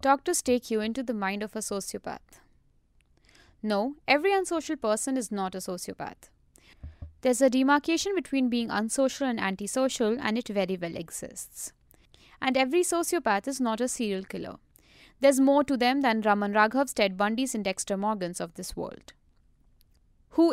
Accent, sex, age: Indian, female, 20-39